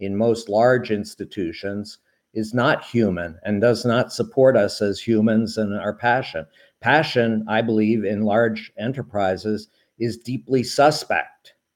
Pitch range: 110-135 Hz